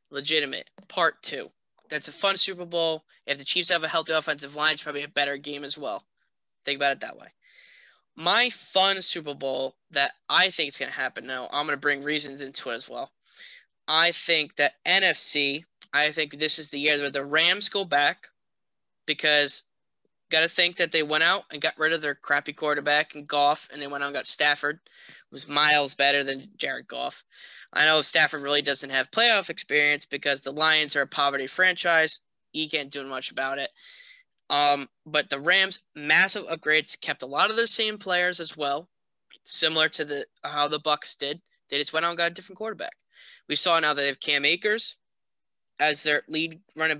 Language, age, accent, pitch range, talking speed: English, 10-29, American, 145-170 Hz, 200 wpm